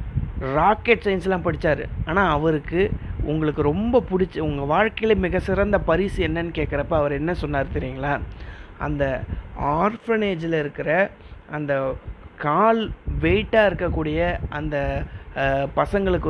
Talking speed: 100 wpm